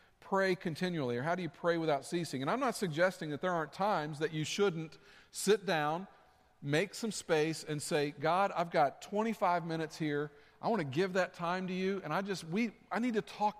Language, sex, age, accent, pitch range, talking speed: English, male, 50-69, American, 155-190 Hz, 215 wpm